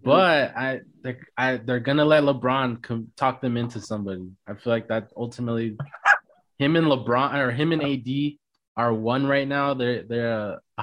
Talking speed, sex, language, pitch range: 195 wpm, male, English, 115-145 Hz